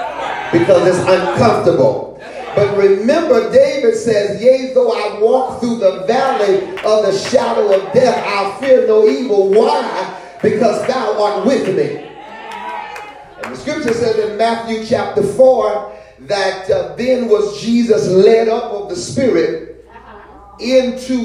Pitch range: 180-240 Hz